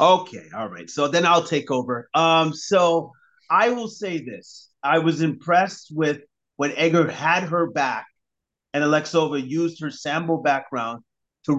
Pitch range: 130-165 Hz